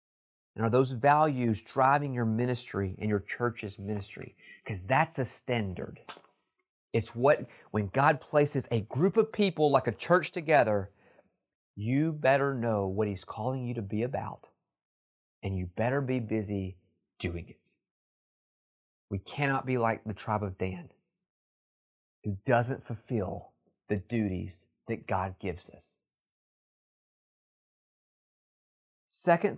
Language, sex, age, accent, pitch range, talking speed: English, male, 30-49, American, 105-150 Hz, 130 wpm